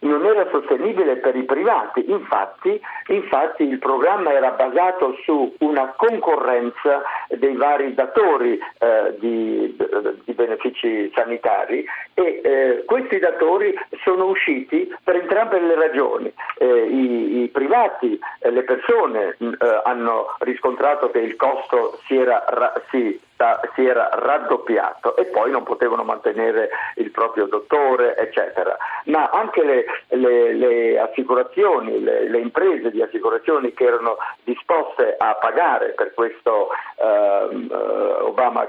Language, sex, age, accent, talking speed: Italian, male, 50-69, native, 125 wpm